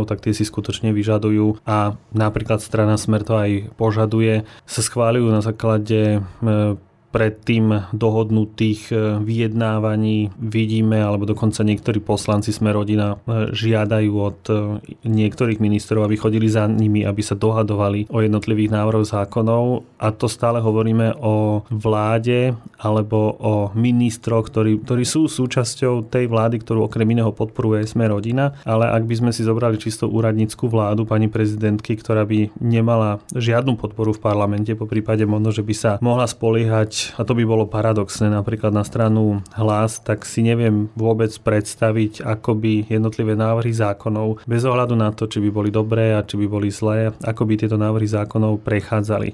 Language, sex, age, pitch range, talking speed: Slovak, male, 30-49, 105-115 Hz, 150 wpm